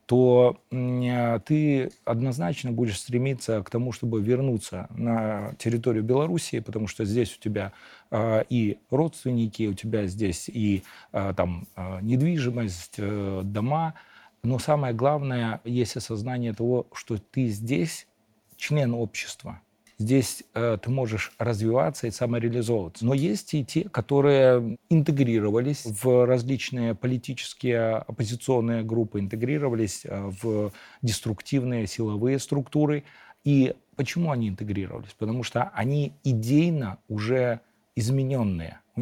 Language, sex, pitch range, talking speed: Russian, male, 110-135 Hz, 105 wpm